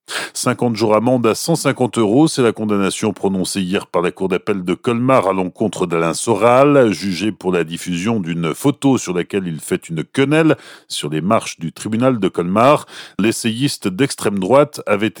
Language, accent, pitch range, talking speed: French, French, 95-135 Hz, 175 wpm